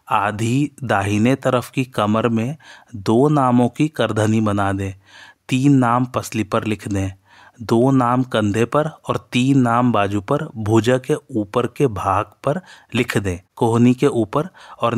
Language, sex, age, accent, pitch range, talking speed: Hindi, male, 30-49, native, 110-130 Hz, 155 wpm